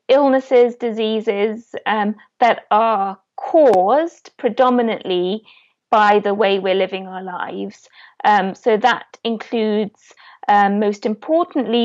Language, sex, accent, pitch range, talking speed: English, female, British, 190-240 Hz, 105 wpm